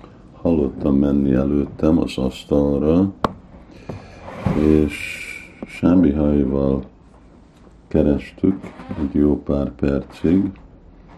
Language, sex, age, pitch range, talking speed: Hungarian, male, 50-69, 70-80 Hz, 70 wpm